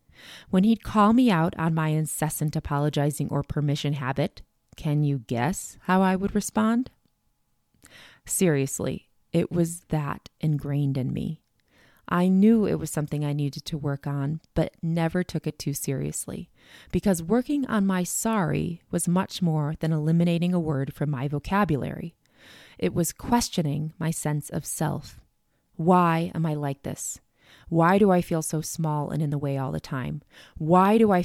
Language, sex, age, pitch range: English, female, 20-39, 150-175 Hz